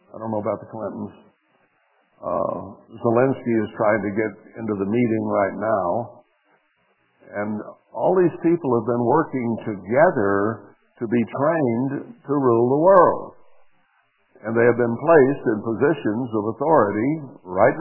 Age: 60-79